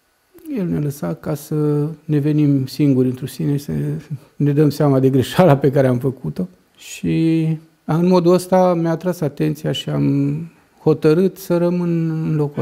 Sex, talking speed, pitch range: male, 170 wpm, 125-160 Hz